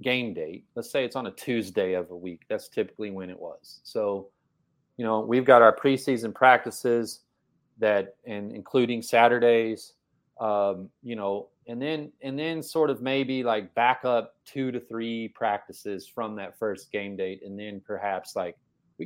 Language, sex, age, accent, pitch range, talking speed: English, male, 30-49, American, 110-145 Hz, 175 wpm